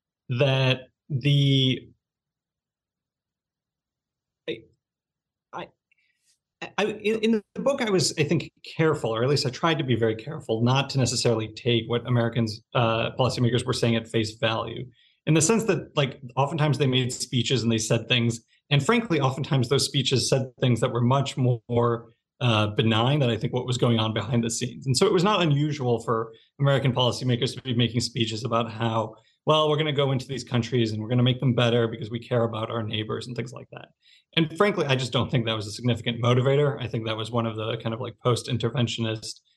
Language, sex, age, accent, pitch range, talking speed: English, male, 30-49, American, 115-140 Hz, 200 wpm